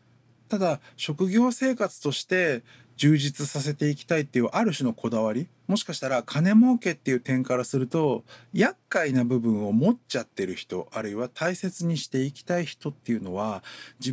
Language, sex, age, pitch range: Japanese, male, 50-69, 125-195 Hz